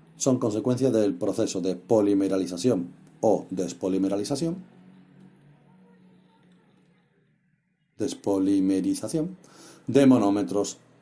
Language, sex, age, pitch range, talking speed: Spanish, male, 40-59, 100-145 Hz, 60 wpm